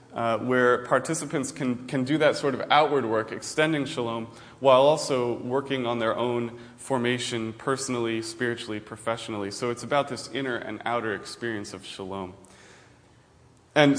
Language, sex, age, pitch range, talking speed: English, male, 30-49, 115-150 Hz, 145 wpm